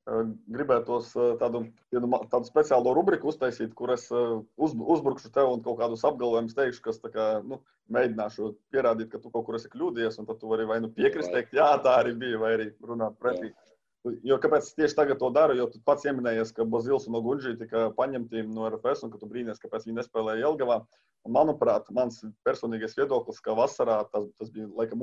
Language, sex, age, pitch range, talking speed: English, male, 20-39, 115-135 Hz, 180 wpm